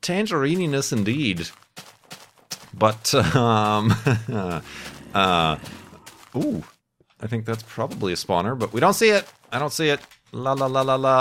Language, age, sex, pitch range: English, 30-49, male, 100-135 Hz